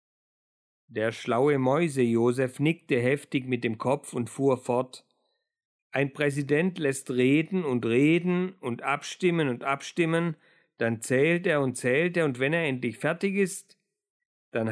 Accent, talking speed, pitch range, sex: German, 140 wpm, 130-175 Hz, male